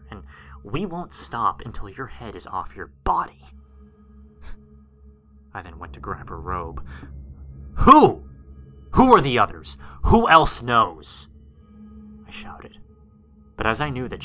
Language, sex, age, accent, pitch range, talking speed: English, male, 30-49, American, 70-115 Hz, 140 wpm